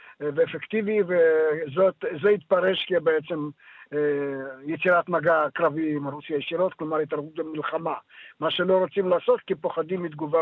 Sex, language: male, Hebrew